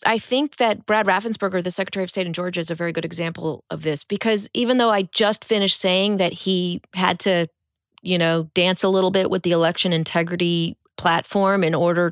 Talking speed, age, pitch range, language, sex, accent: 210 wpm, 30-49, 170-205 Hz, English, female, American